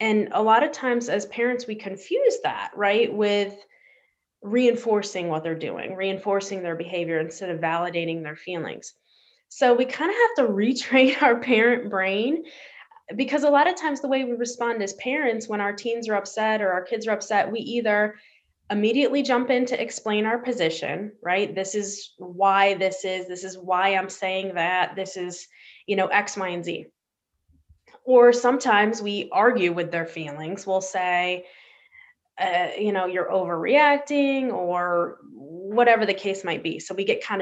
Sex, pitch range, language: female, 190-250 Hz, English